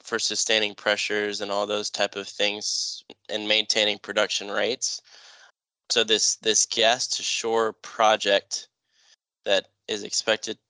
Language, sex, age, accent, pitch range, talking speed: English, male, 10-29, American, 105-115 Hz, 130 wpm